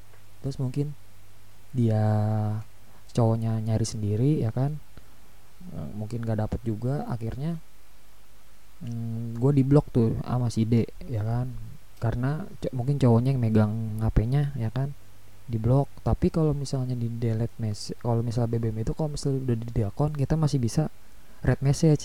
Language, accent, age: Indonesian, native, 20-39